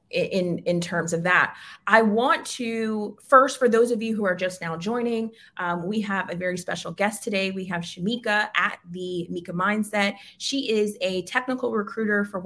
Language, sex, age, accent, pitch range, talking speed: English, female, 20-39, American, 180-225 Hz, 190 wpm